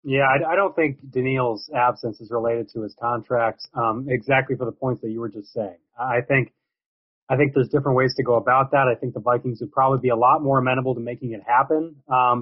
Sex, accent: male, American